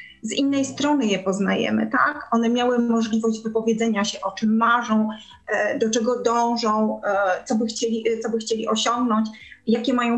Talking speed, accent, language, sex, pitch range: 140 wpm, native, Polish, female, 220-255 Hz